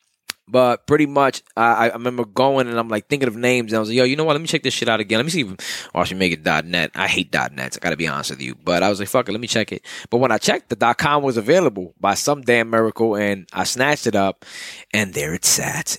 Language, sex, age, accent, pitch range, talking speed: English, male, 20-39, American, 95-125 Hz, 305 wpm